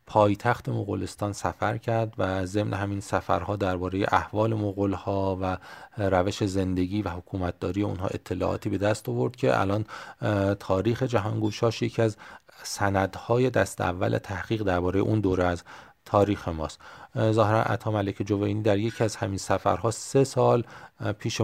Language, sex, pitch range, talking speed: Persian, male, 95-115 Hz, 140 wpm